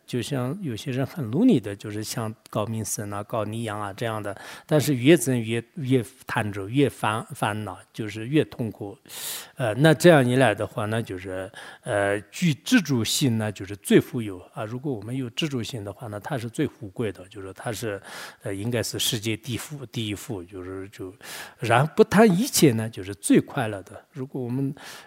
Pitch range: 105-140 Hz